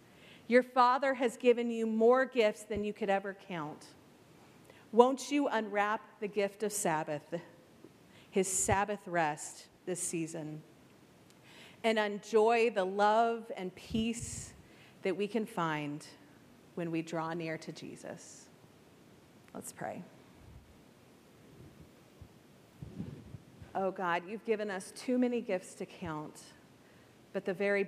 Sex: female